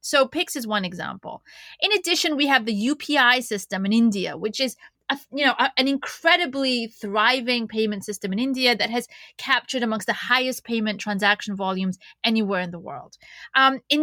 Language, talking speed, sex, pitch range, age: English, 180 wpm, female, 210-275 Hz, 30-49